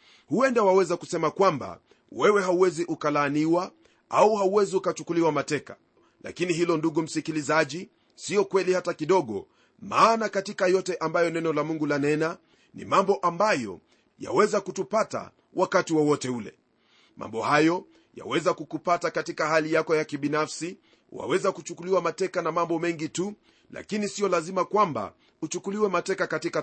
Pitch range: 155-190 Hz